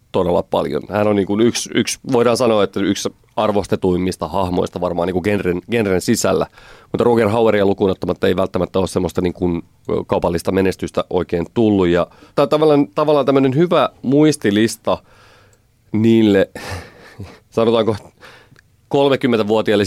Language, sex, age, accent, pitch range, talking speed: Finnish, male, 30-49, native, 95-115 Hz, 135 wpm